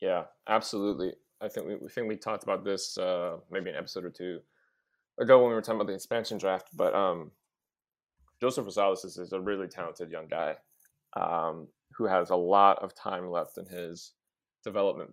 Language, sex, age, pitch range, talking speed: English, male, 30-49, 90-110 Hz, 185 wpm